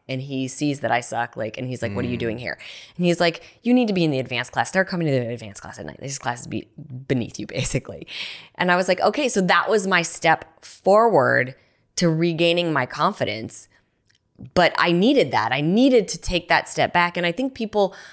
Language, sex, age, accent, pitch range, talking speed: English, female, 20-39, American, 145-195 Hz, 230 wpm